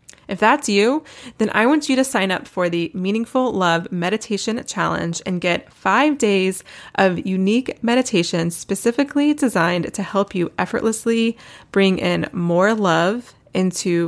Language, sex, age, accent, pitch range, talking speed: English, female, 20-39, American, 180-220 Hz, 145 wpm